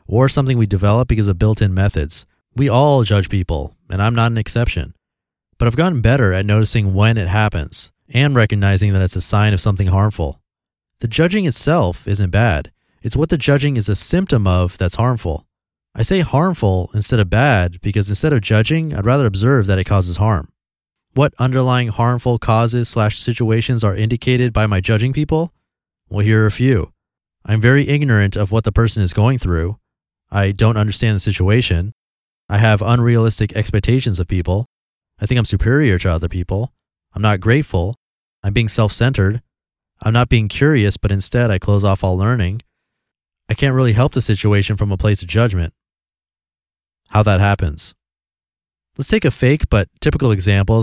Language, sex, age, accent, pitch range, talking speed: English, male, 30-49, American, 95-120 Hz, 175 wpm